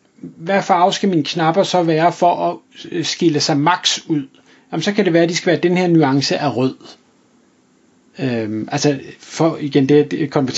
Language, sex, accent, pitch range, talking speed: Danish, male, native, 150-200 Hz, 180 wpm